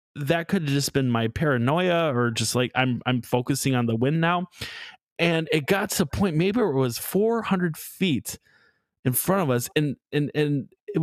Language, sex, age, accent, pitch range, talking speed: English, male, 20-39, American, 125-170 Hz, 195 wpm